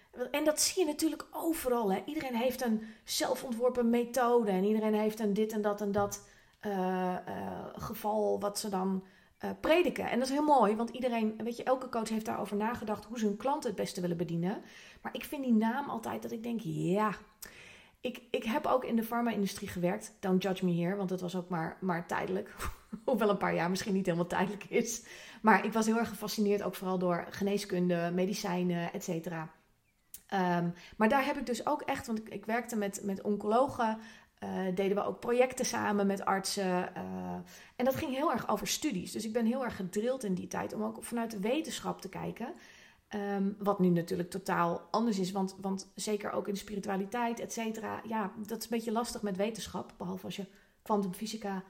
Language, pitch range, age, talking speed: Dutch, 190-235 Hz, 30-49, 205 wpm